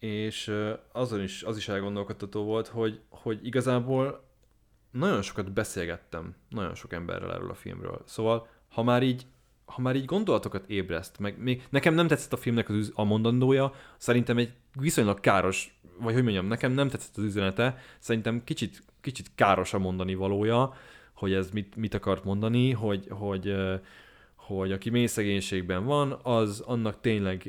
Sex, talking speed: male, 155 wpm